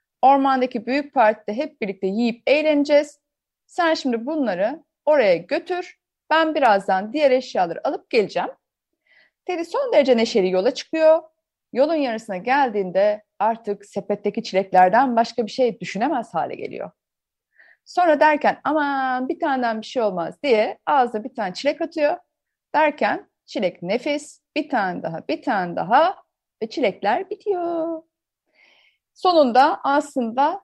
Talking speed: 125 wpm